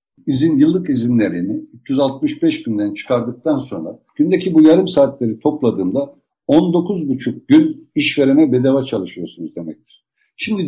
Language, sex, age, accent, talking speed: Turkish, male, 60-79, native, 105 wpm